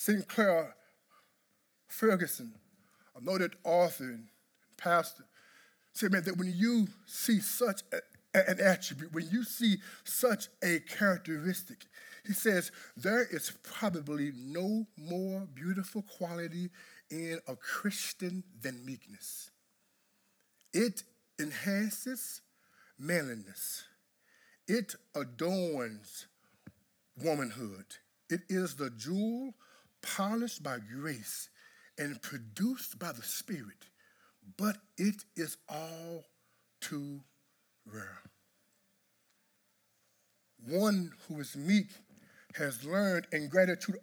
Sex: male